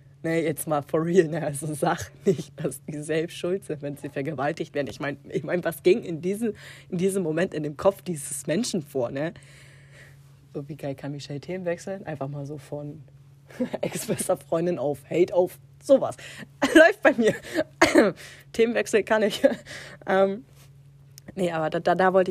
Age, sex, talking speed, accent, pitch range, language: 30-49, female, 180 wpm, German, 140-185 Hz, German